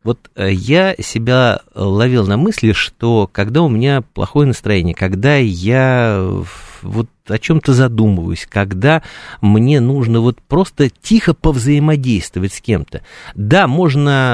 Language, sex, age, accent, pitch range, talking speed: Russian, male, 50-69, native, 95-130 Hz, 120 wpm